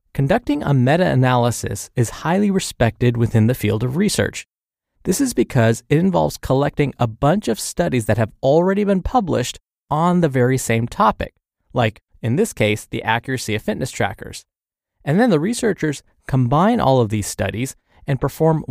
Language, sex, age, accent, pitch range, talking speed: English, male, 20-39, American, 115-155 Hz, 165 wpm